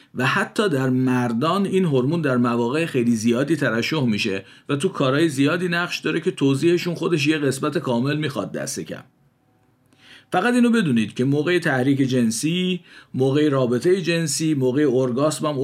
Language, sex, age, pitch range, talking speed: Persian, male, 50-69, 120-155 Hz, 150 wpm